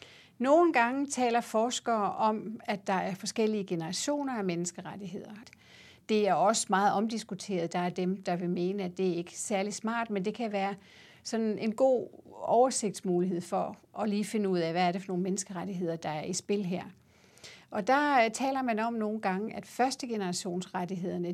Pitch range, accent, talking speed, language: 185-225 Hz, native, 175 wpm, Danish